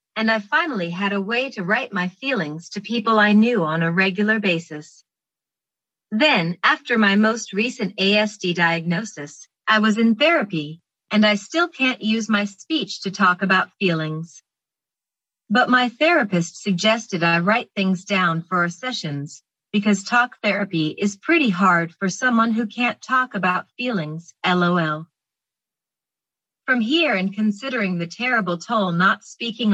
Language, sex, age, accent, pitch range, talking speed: English, female, 40-59, American, 180-230 Hz, 150 wpm